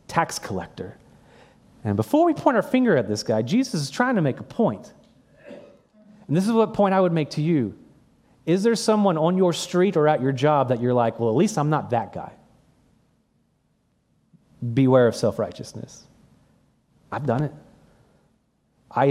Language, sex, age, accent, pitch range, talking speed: English, male, 30-49, American, 120-165 Hz, 175 wpm